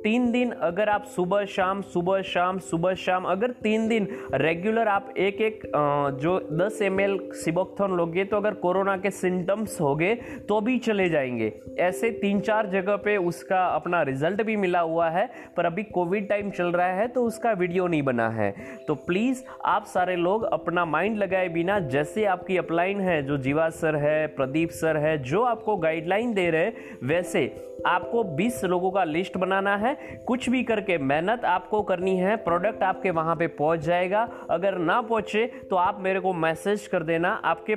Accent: native